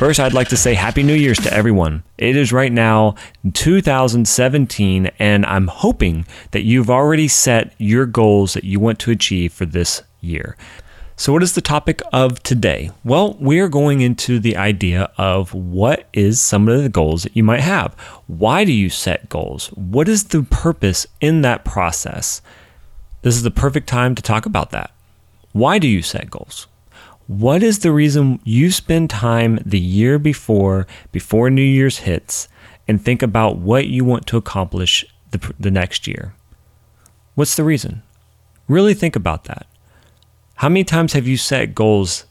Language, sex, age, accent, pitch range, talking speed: English, male, 30-49, American, 100-130 Hz, 175 wpm